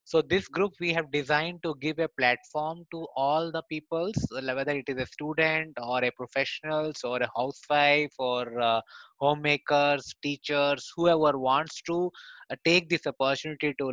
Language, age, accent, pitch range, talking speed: Hindi, 20-39, native, 125-150 Hz, 160 wpm